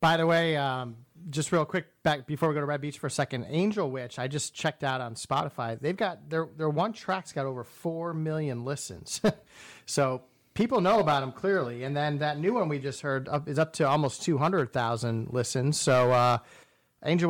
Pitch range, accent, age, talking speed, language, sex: 130-165 Hz, American, 40-59, 205 wpm, English, male